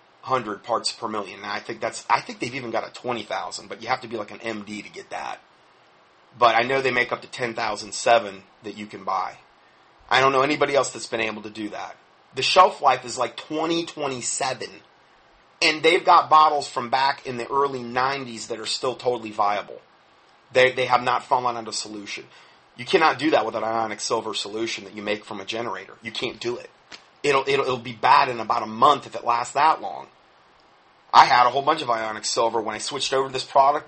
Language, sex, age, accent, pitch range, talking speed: English, male, 30-49, American, 115-145 Hz, 220 wpm